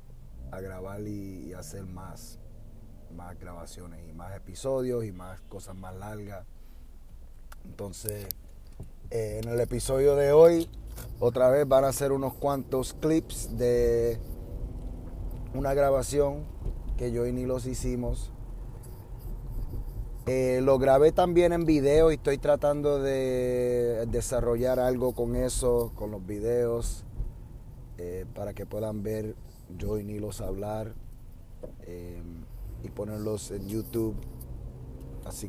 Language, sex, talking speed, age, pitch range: Spanish, male, 120 wpm, 30-49, 105-125 Hz